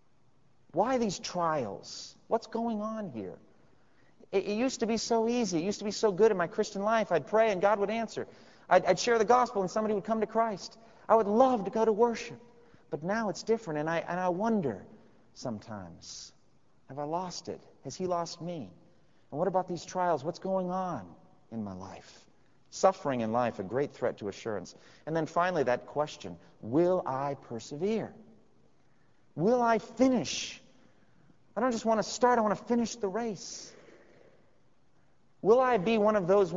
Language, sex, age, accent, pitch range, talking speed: English, male, 40-59, American, 135-210 Hz, 185 wpm